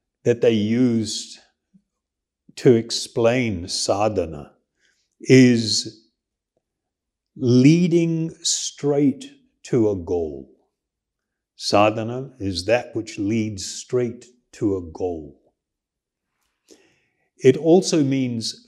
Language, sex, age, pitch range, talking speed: English, male, 60-79, 100-135 Hz, 75 wpm